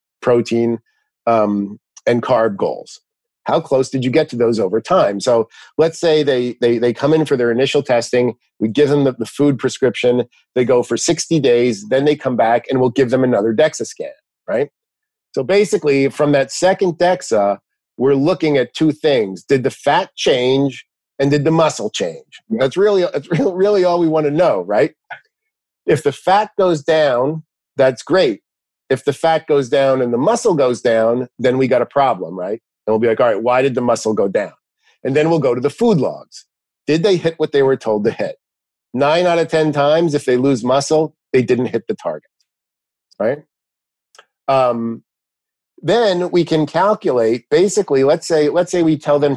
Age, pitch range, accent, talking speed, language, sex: 50-69, 120-160 Hz, American, 195 wpm, English, male